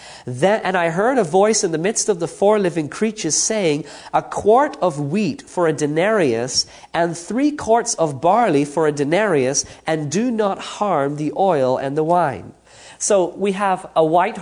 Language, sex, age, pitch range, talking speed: English, male, 40-59, 145-195 Hz, 185 wpm